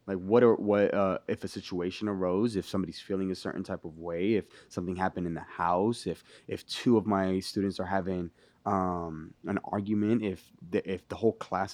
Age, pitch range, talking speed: 20-39, 95-120 Hz, 205 wpm